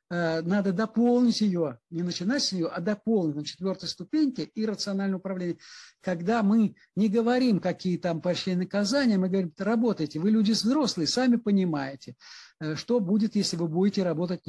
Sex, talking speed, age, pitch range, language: male, 150 wpm, 60-79, 170-225 Hz, Ukrainian